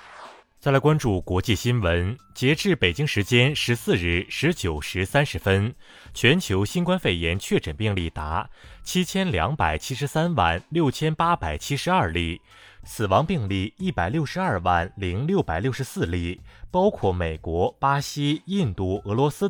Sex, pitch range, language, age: male, 90-150 Hz, Chinese, 20-39